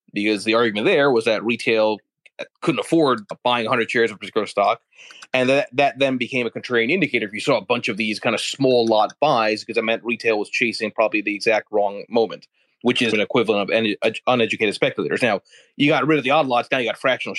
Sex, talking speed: male, 230 wpm